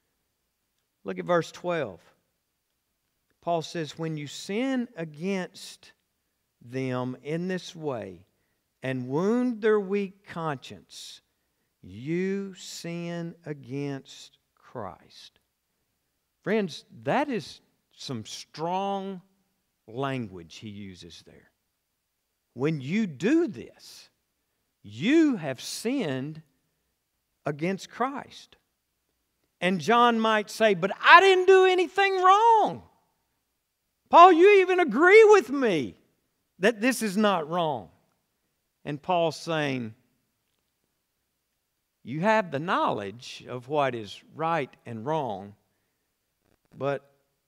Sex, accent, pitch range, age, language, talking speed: male, American, 125-200 Hz, 50-69, English, 95 wpm